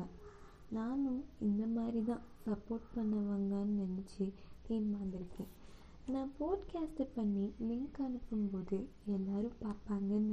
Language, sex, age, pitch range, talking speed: Tamil, female, 20-39, 205-270 Hz, 80 wpm